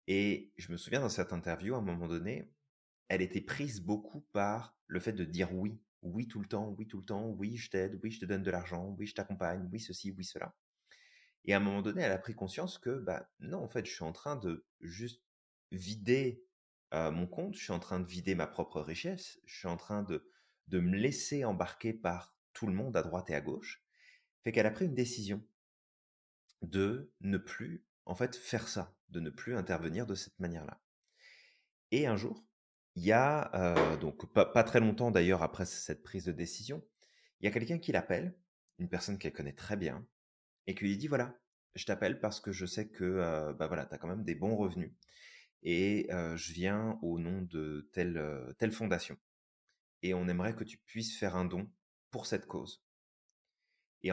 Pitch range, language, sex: 90-110 Hz, French, male